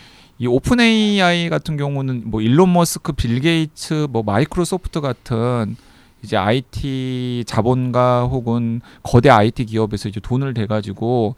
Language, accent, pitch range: Korean, native, 110-160 Hz